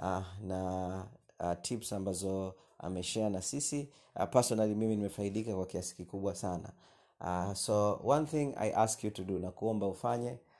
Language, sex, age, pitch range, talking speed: Swahili, male, 30-49, 100-125 Hz, 160 wpm